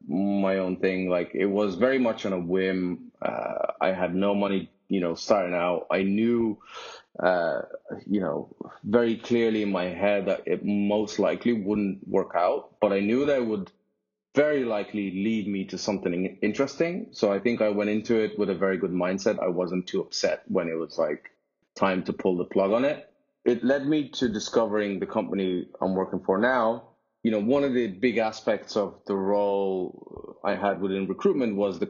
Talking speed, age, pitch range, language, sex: 195 wpm, 30-49, 95-115 Hz, English, male